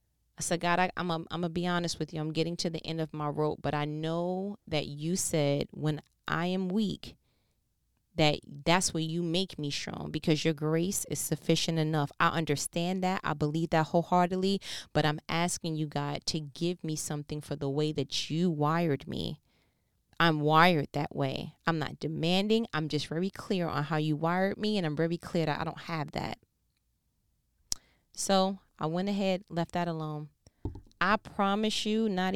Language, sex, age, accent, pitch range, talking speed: English, female, 20-39, American, 150-175 Hz, 185 wpm